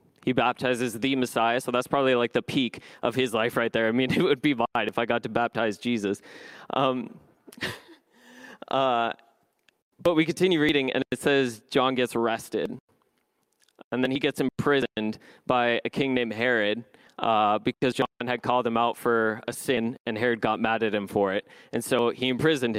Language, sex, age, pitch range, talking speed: English, male, 20-39, 115-140 Hz, 185 wpm